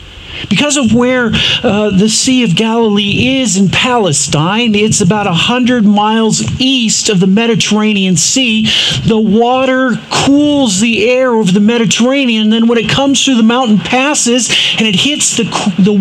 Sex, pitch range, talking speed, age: male, 140-220 Hz, 155 wpm, 50-69